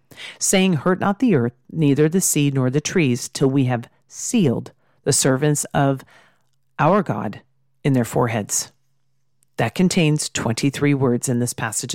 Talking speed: 150 wpm